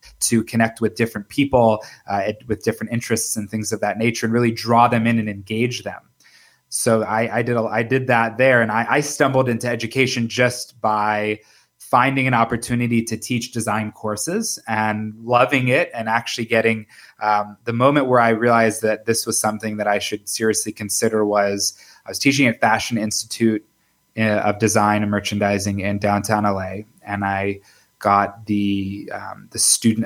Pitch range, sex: 105-115 Hz, male